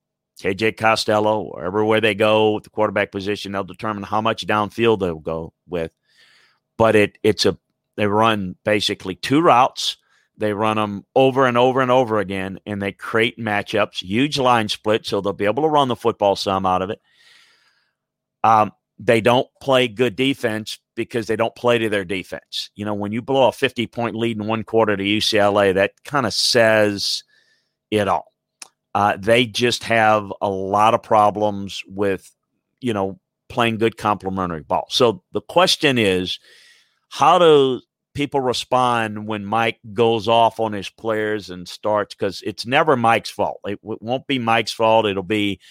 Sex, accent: male, American